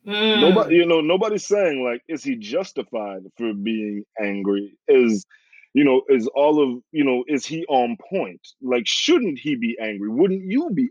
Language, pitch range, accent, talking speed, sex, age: English, 105-145 Hz, American, 175 wpm, male, 20-39